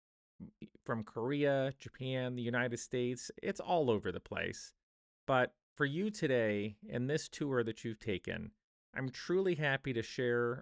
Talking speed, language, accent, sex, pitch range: 145 wpm, English, American, male, 115-150 Hz